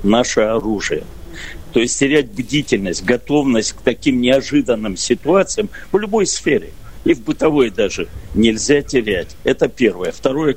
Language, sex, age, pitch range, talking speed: Russian, male, 60-79, 110-135 Hz, 130 wpm